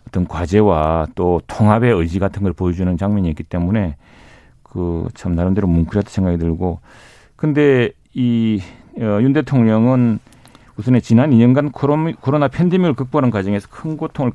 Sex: male